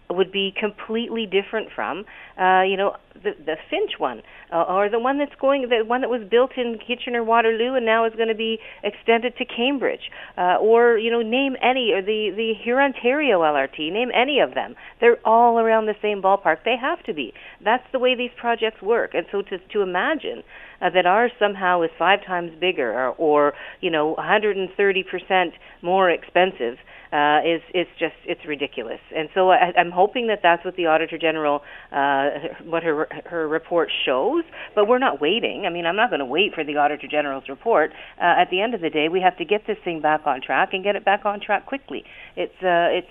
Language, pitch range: English, 165-225 Hz